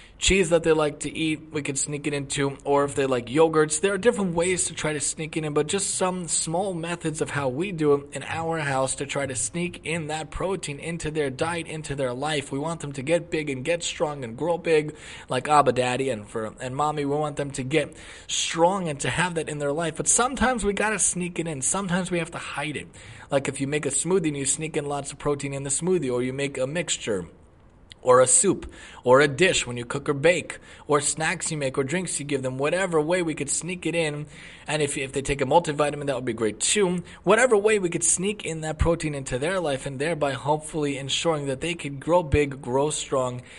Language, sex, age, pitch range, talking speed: English, male, 20-39, 135-165 Hz, 245 wpm